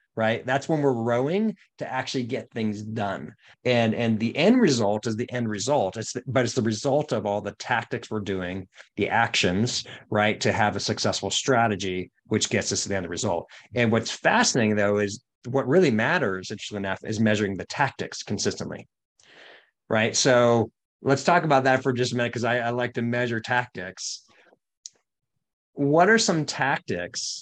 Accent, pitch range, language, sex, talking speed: American, 105-130 Hz, English, male, 175 wpm